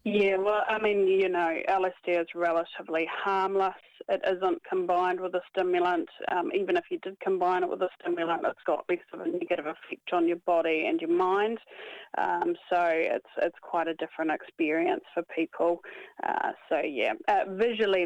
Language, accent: English, Australian